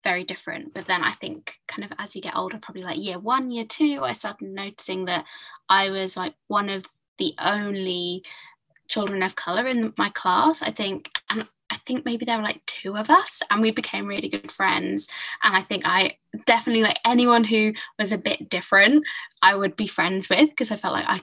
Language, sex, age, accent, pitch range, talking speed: English, female, 10-29, British, 190-230 Hz, 210 wpm